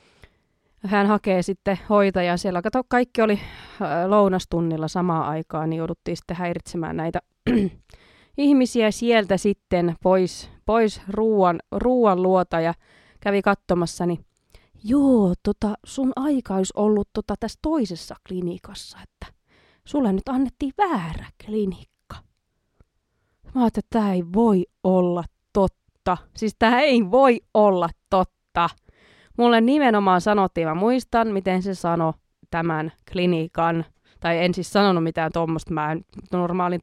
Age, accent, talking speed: 20-39, native, 115 wpm